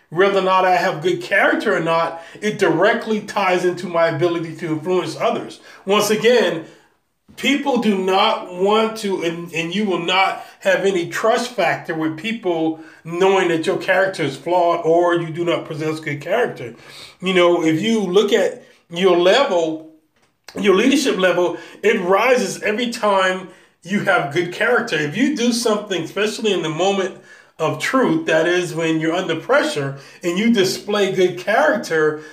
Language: English